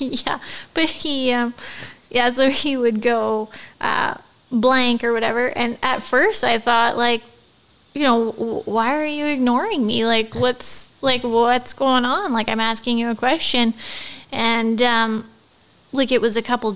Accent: American